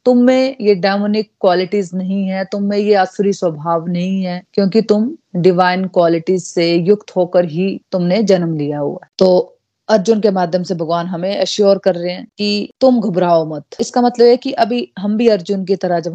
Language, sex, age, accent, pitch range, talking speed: Hindi, female, 30-49, native, 165-205 Hz, 190 wpm